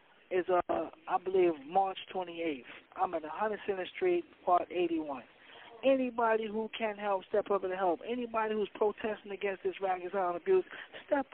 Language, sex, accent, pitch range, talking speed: English, male, American, 180-225 Hz, 155 wpm